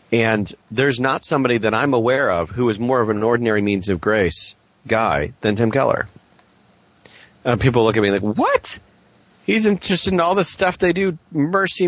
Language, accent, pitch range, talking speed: English, American, 115-150 Hz, 185 wpm